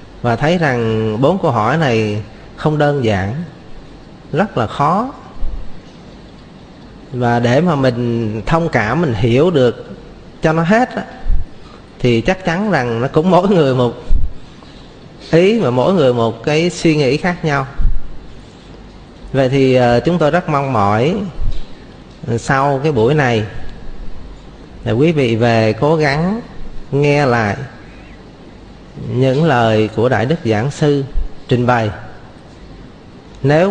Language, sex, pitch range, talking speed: Vietnamese, male, 115-155 Hz, 130 wpm